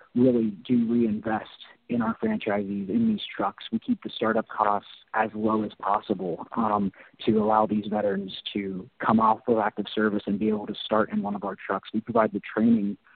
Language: English